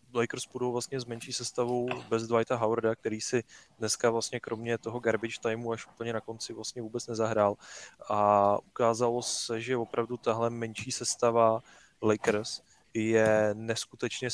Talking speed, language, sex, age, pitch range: 145 wpm, Czech, male, 20-39, 110-125 Hz